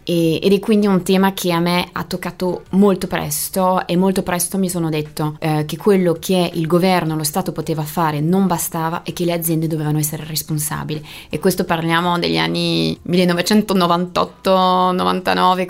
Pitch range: 165-190 Hz